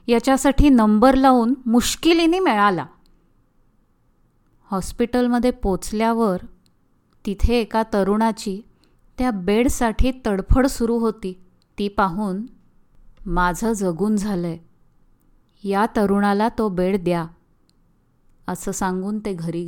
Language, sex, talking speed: Marathi, female, 90 wpm